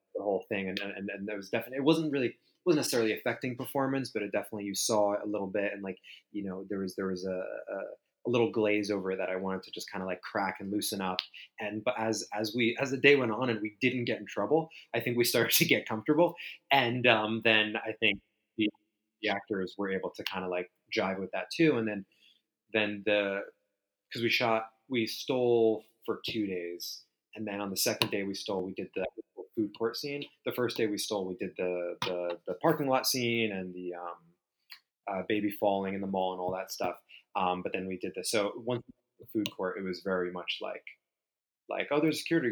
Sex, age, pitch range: male, 20-39, 95-120 Hz